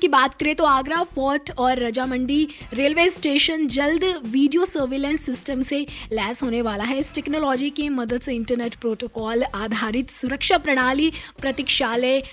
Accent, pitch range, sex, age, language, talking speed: native, 235-295 Hz, female, 20-39, Hindi, 145 wpm